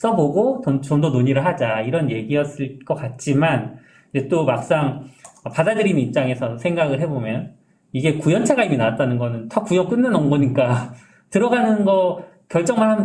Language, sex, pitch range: Korean, male, 125-170 Hz